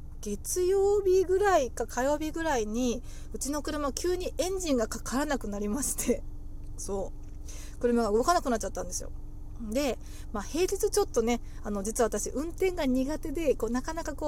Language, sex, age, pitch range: Japanese, female, 20-39, 230-335 Hz